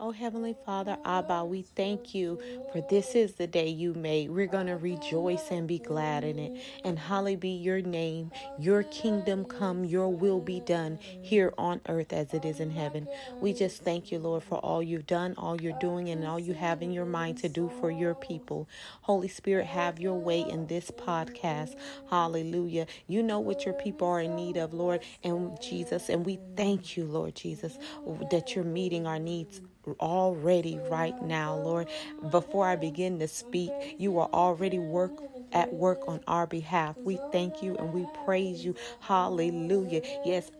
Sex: female